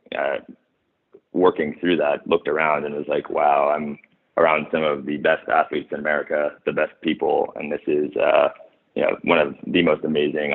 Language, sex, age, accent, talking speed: English, male, 20-39, American, 190 wpm